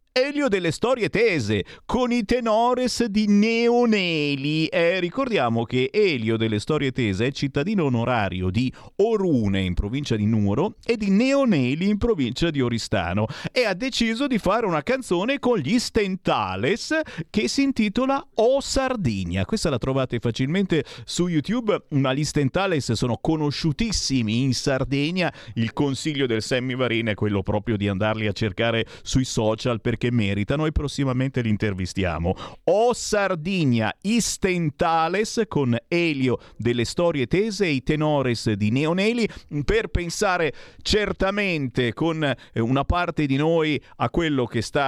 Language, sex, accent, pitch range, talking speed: Italian, male, native, 120-190 Hz, 140 wpm